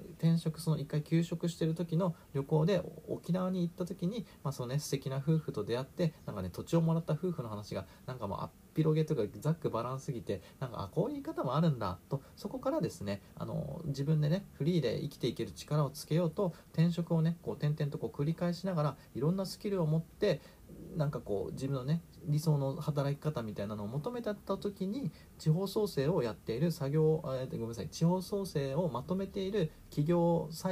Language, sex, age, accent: Japanese, male, 40-59, native